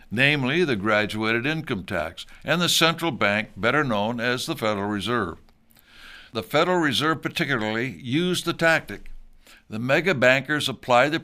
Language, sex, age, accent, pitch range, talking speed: English, male, 60-79, American, 110-150 Hz, 140 wpm